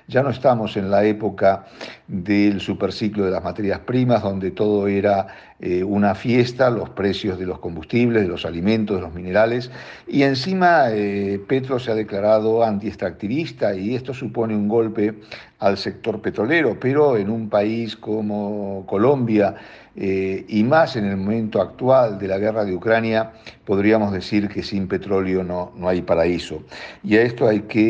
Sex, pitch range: male, 95-115 Hz